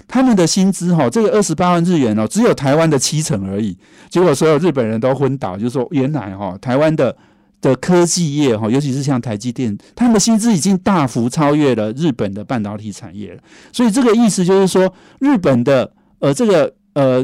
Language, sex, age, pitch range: Chinese, male, 50-69, 120-185 Hz